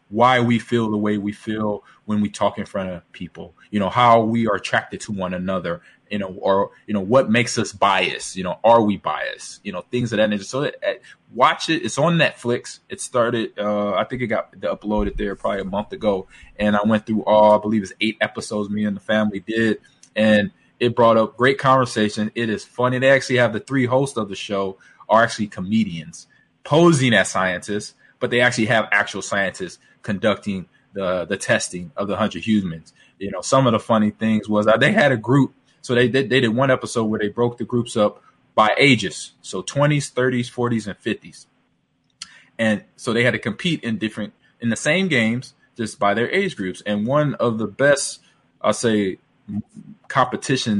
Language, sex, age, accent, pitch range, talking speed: English, male, 20-39, American, 105-130 Hz, 210 wpm